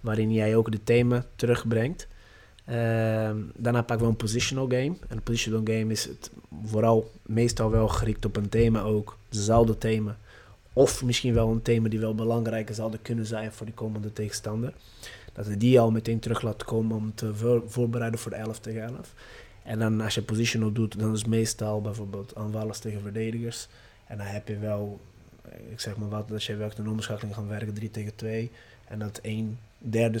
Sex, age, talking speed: male, 20-39, 195 wpm